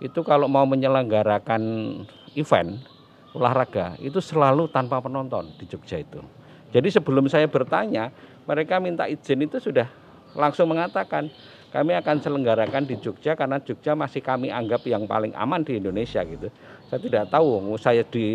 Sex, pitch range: male, 110-145 Hz